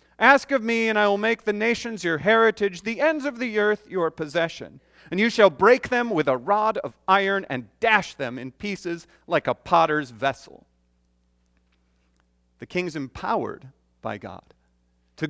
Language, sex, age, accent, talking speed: English, male, 40-59, American, 170 wpm